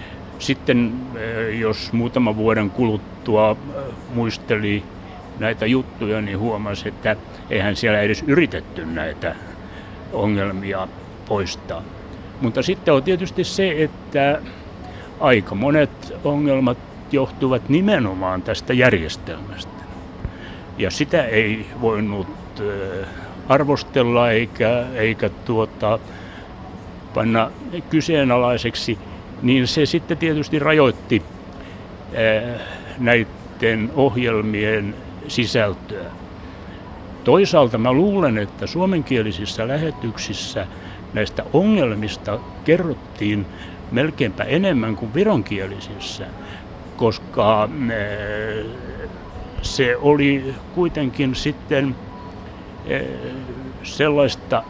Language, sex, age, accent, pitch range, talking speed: Finnish, male, 60-79, native, 95-125 Hz, 75 wpm